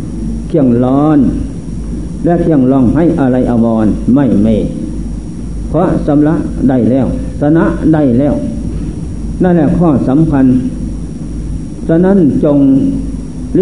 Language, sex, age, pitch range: Thai, male, 60-79, 135-175 Hz